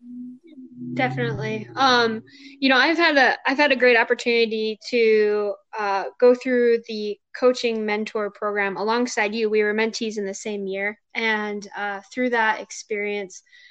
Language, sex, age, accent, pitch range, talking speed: English, female, 10-29, American, 210-240 Hz, 150 wpm